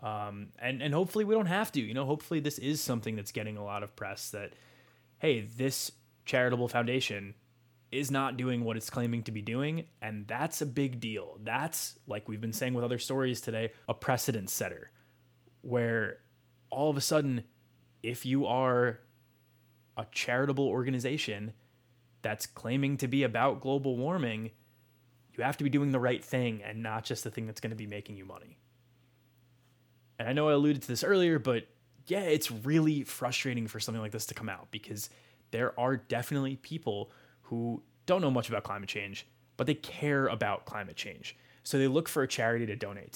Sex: male